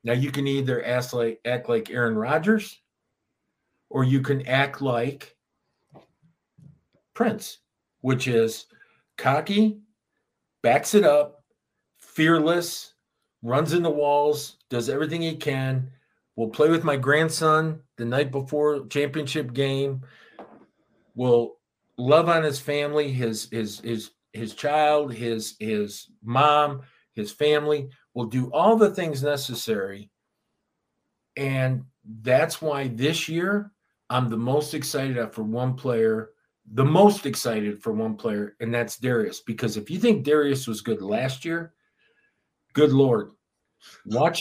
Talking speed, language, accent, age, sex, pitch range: 130 wpm, English, American, 50-69, male, 120-155 Hz